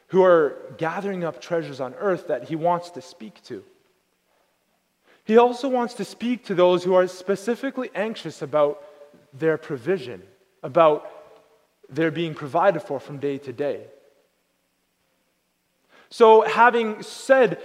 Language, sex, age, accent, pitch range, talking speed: English, male, 30-49, American, 155-215 Hz, 135 wpm